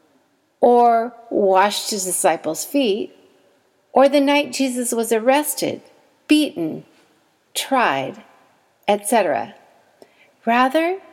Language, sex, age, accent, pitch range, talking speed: English, female, 60-79, American, 205-285 Hz, 80 wpm